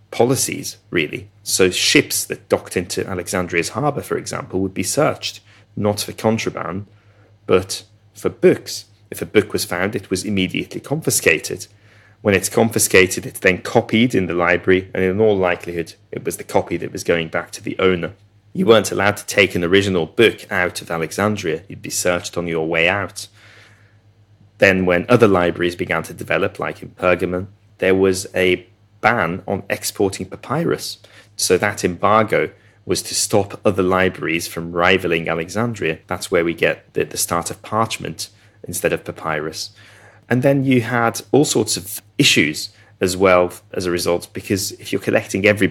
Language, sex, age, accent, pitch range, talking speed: English, male, 30-49, British, 90-105 Hz, 170 wpm